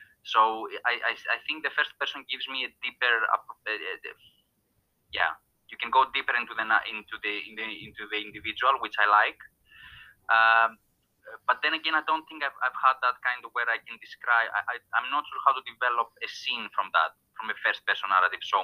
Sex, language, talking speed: male, English, 205 wpm